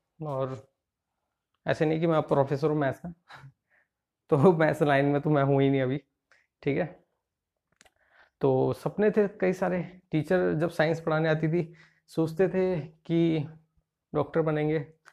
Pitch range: 150-180 Hz